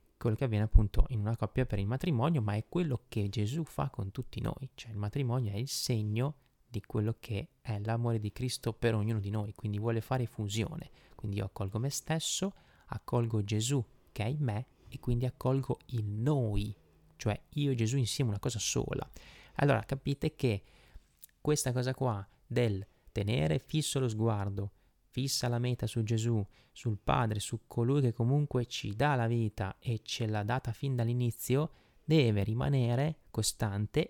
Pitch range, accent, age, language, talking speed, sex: 105-130 Hz, native, 30-49, Italian, 175 wpm, male